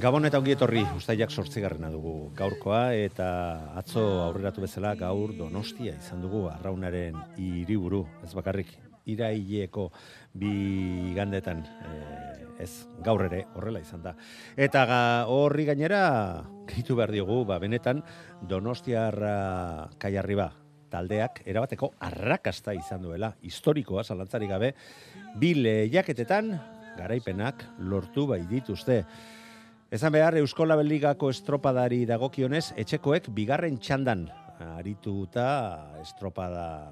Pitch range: 90-130 Hz